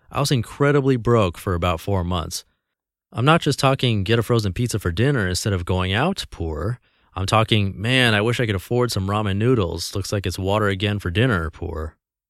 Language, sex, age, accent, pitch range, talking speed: English, male, 30-49, American, 95-115 Hz, 205 wpm